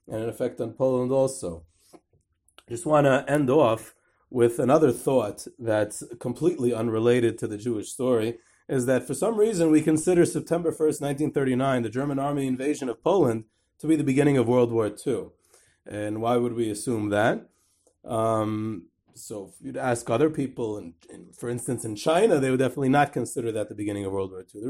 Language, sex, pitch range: English, male, 115-145 Hz